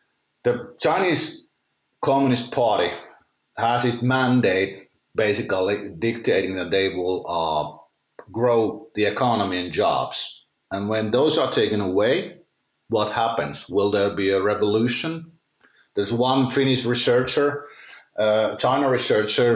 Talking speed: 115 wpm